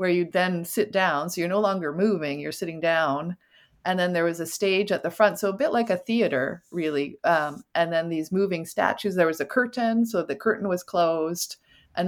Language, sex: English, female